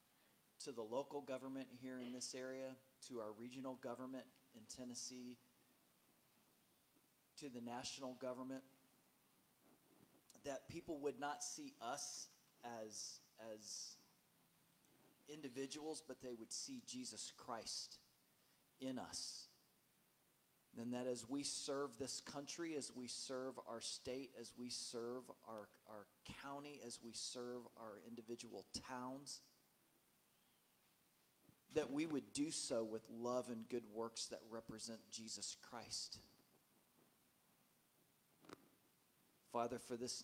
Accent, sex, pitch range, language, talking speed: American, male, 115-135 Hz, English, 115 wpm